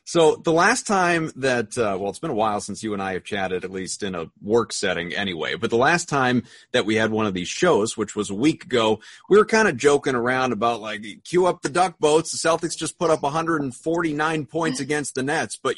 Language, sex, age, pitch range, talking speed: English, male, 30-49, 110-155 Hz, 245 wpm